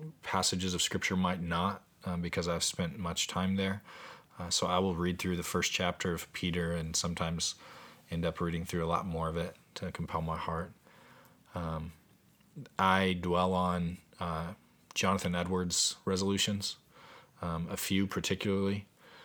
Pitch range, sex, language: 85-95 Hz, male, English